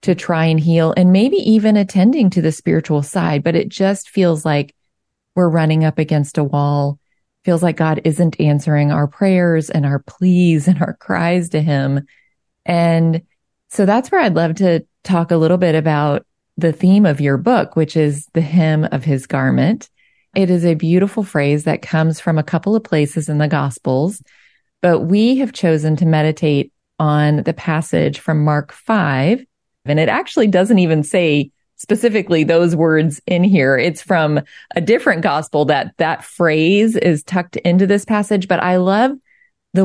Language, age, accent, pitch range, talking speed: English, 30-49, American, 155-185 Hz, 175 wpm